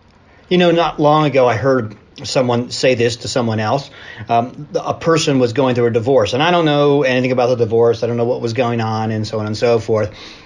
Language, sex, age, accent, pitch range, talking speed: English, male, 40-59, American, 110-145 Hz, 240 wpm